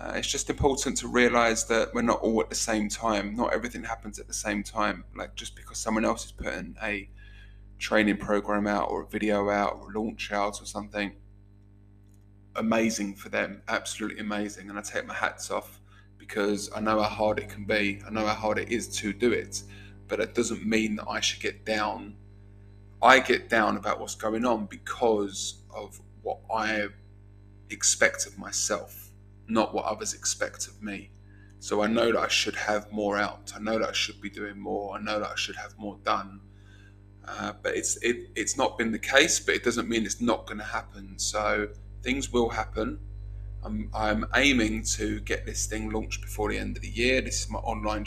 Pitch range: 100-110 Hz